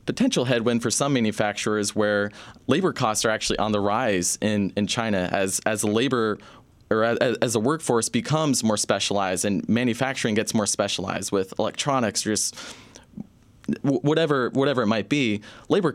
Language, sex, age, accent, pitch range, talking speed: English, male, 20-39, American, 100-125 Hz, 160 wpm